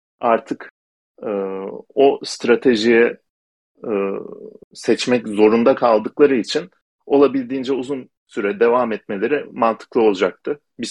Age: 40-59